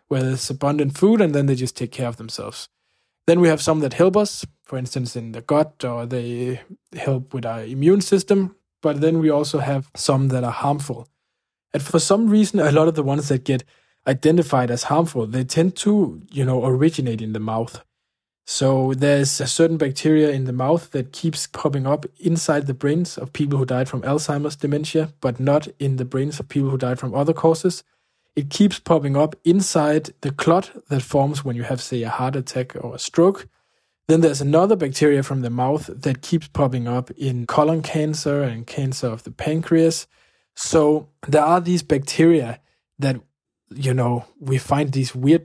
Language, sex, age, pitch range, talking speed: English, male, 20-39, 130-160 Hz, 195 wpm